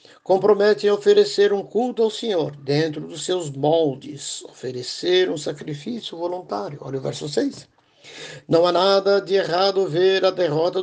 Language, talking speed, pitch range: Portuguese, 150 wpm, 150-195 Hz